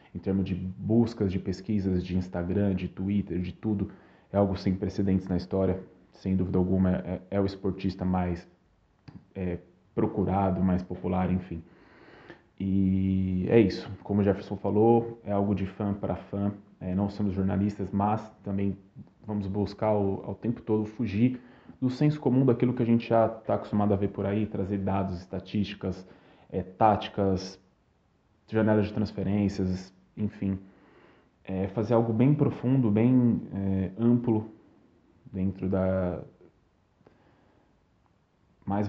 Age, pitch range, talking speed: 20-39, 95-105 Hz, 140 wpm